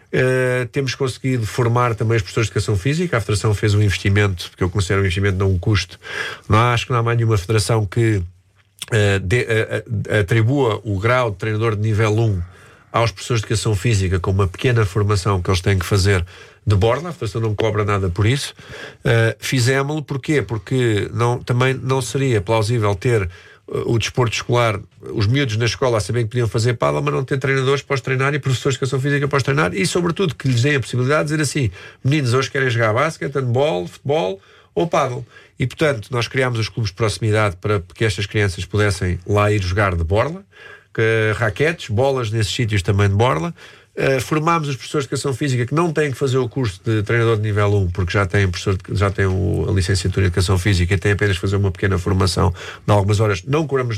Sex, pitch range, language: male, 100-130 Hz, Portuguese